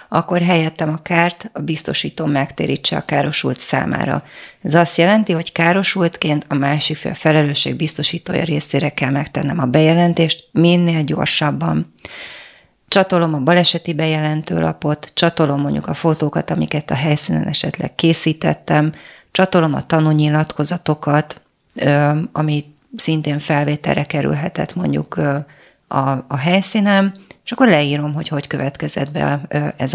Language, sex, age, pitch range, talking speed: Hungarian, female, 30-49, 150-170 Hz, 115 wpm